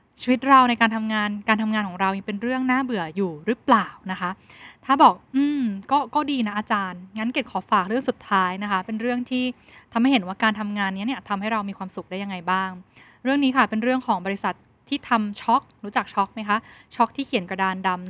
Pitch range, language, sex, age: 195-245 Hz, Thai, female, 10-29